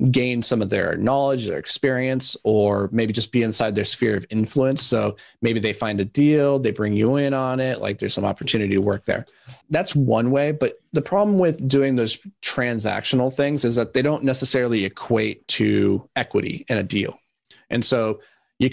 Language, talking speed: English, 190 wpm